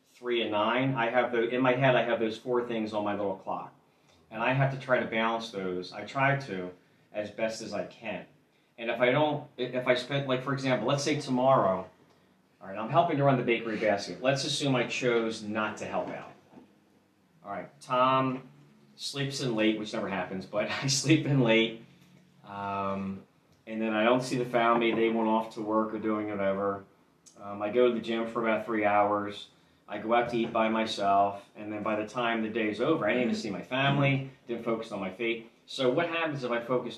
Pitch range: 105-125 Hz